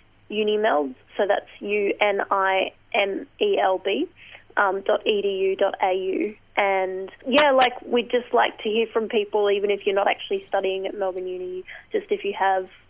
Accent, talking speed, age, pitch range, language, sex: Australian, 180 wpm, 20-39, 195-230 Hz, English, female